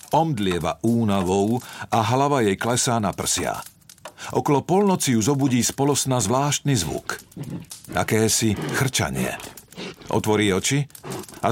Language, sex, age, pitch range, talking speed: Slovak, male, 50-69, 110-145 Hz, 110 wpm